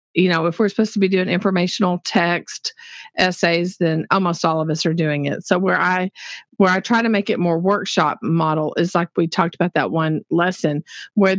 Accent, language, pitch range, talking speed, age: American, English, 160-200 Hz, 210 wpm, 50-69